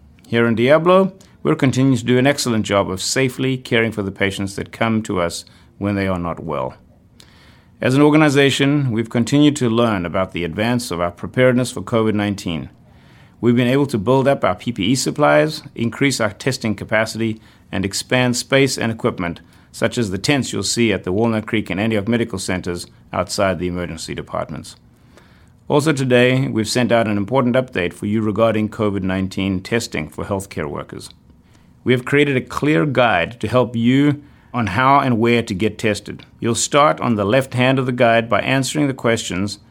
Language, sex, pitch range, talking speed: English, male, 100-125 Hz, 185 wpm